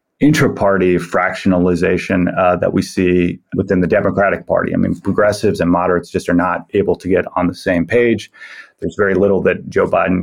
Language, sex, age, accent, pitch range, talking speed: English, male, 30-49, American, 85-100 Hz, 180 wpm